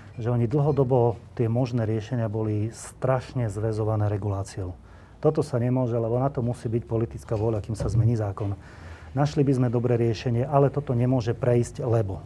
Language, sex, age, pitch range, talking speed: Slovak, male, 30-49, 110-130 Hz, 165 wpm